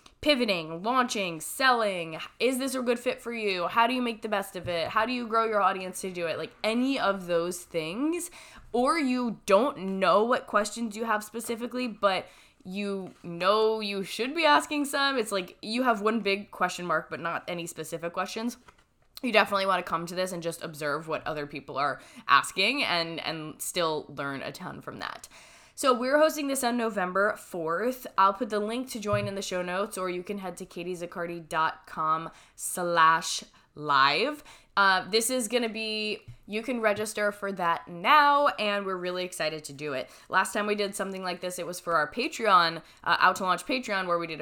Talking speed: 200 wpm